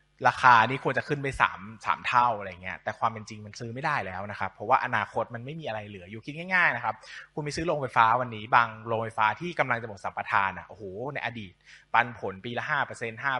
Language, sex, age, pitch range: Thai, male, 20-39, 110-145 Hz